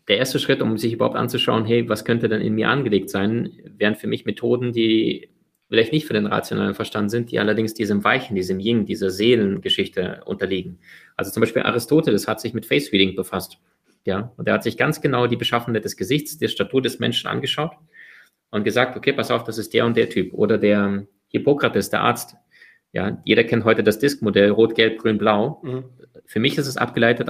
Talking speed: 205 wpm